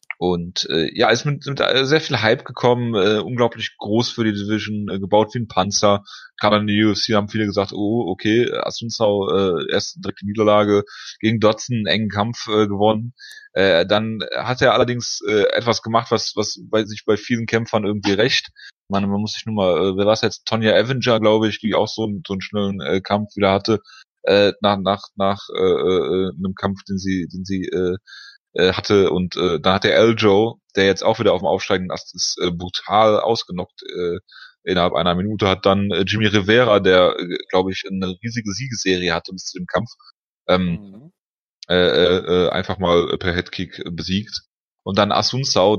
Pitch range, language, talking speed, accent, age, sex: 95-115 Hz, German, 200 wpm, German, 30-49, male